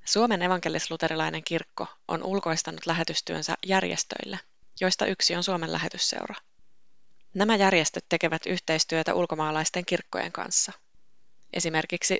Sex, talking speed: female, 100 wpm